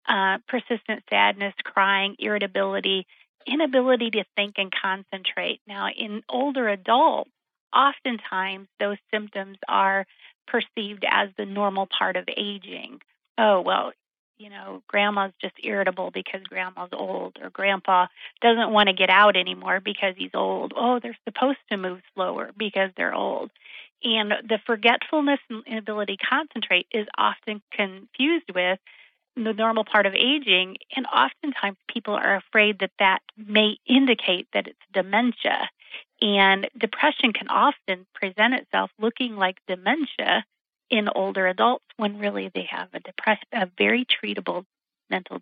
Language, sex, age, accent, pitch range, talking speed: English, female, 40-59, American, 195-235 Hz, 140 wpm